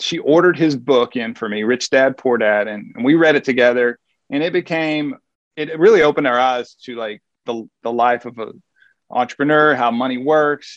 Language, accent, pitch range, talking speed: English, American, 120-145 Hz, 195 wpm